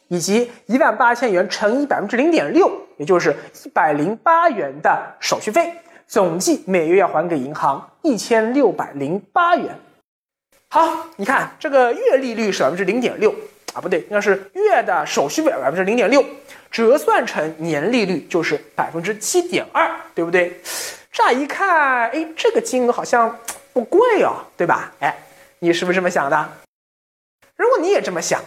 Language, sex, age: Chinese, male, 20-39